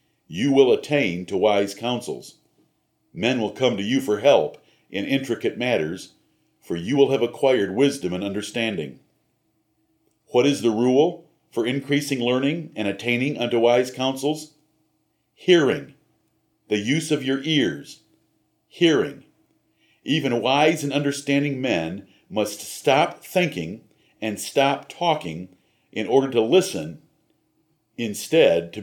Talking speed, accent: 125 wpm, American